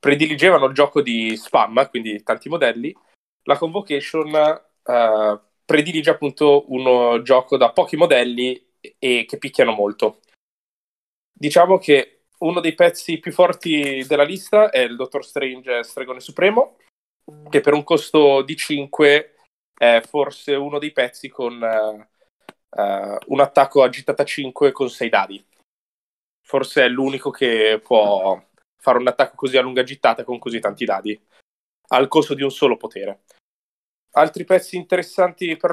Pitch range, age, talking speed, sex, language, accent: 125-155 Hz, 20-39, 145 wpm, male, Italian, native